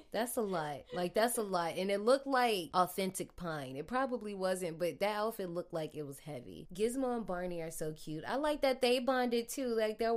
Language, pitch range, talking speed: English, 150-195 Hz, 225 wpm